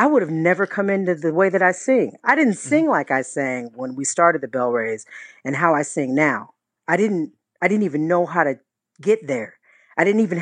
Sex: female